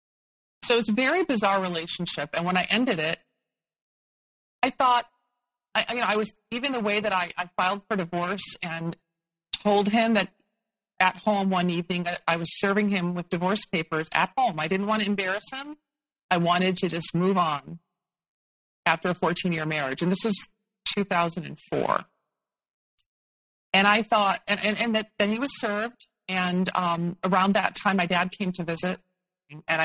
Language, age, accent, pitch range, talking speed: English, 40-59, American, 165-205 Hz, 180 wpm